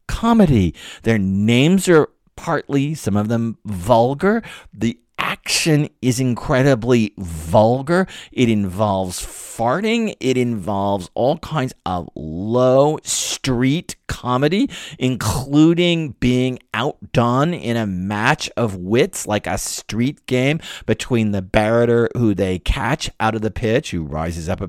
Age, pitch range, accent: 50-69, 105-145 Hz, American